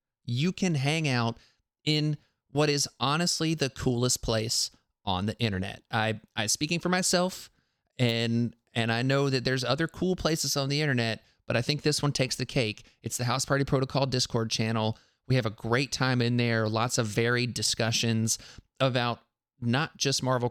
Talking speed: 180 wpm